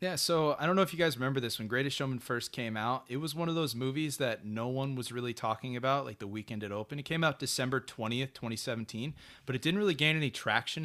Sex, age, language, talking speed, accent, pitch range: male, 20-39, English, 260 wpm, American, 105-135 Hz